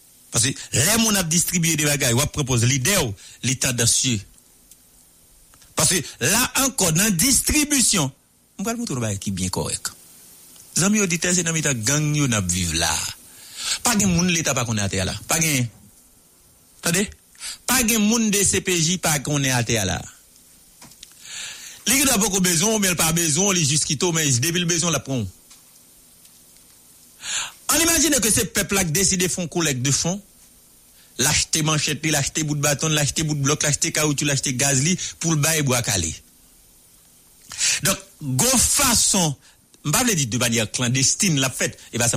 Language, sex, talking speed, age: English, male, 185 wpm, 60-79